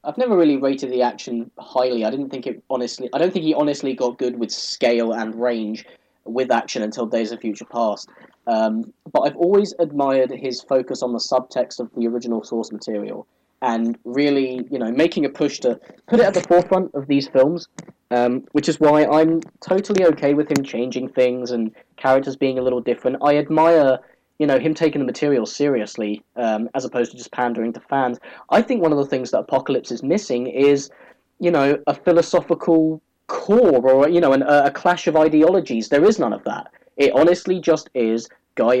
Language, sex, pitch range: English, male, 120-150 Hz